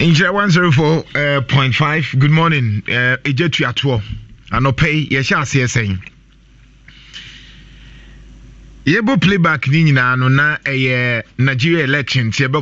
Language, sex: English, male